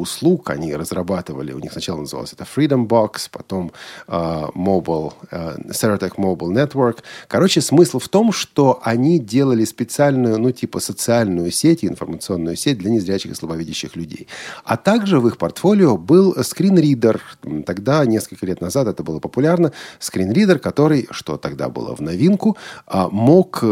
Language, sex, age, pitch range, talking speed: Russian, male, 40-59, 100-150 Hz, 145 wpm